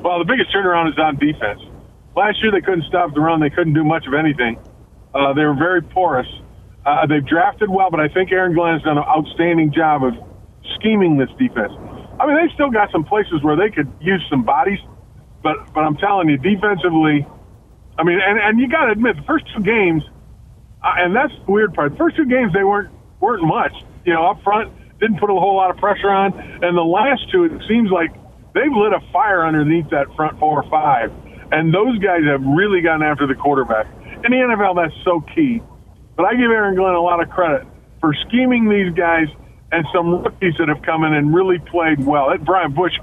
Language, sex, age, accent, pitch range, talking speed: English, male, 40-59, American, 150-195 Hz, 220 wpm